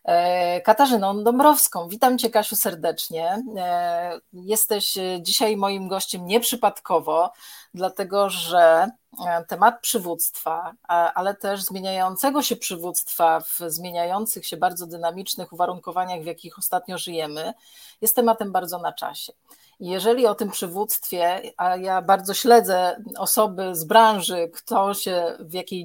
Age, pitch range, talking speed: 40-59, 175-220 Hz, 115 wpm